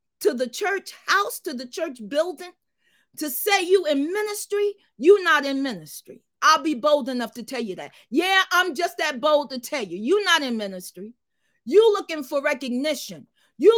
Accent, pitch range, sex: American, 255-360 Hz, female